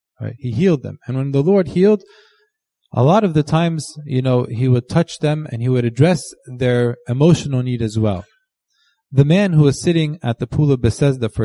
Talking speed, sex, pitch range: 210 wpm, male, 125-165 Hz